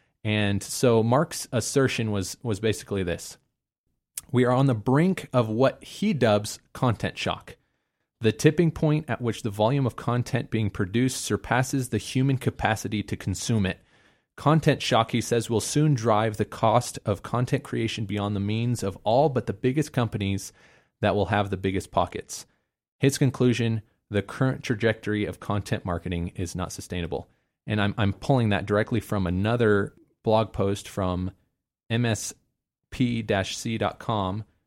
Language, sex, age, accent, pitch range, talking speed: English, male, 30-49, American, 100-130 Hz, 150 wpm